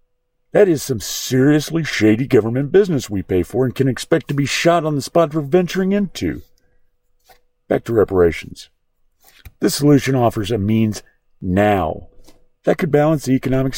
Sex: male